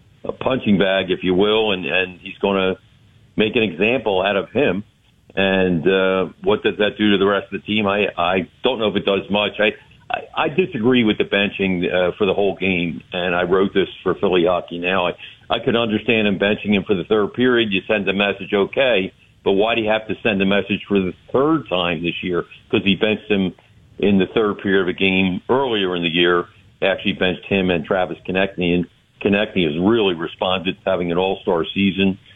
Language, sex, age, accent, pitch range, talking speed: English, male, 50-69, American, 90-105 Hz, 220 wpm